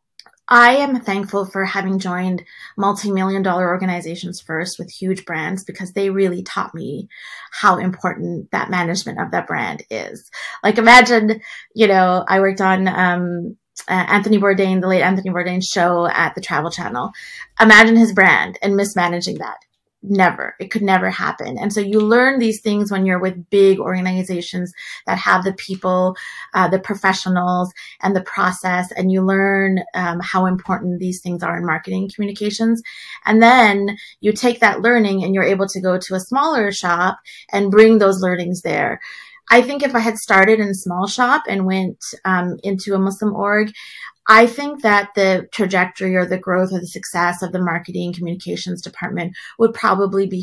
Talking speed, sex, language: 175 wpm, female, English